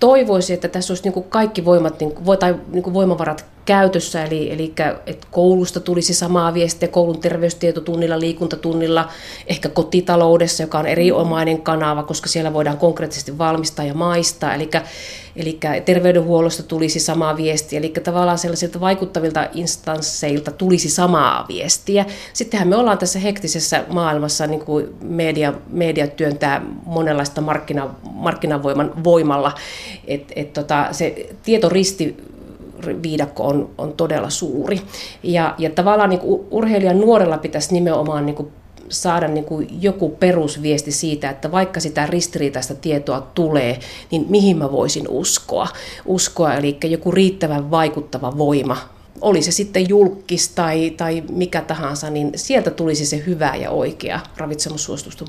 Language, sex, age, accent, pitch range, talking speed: Finnish, female, 30-49, native, 150-180 Hz, 125 wpm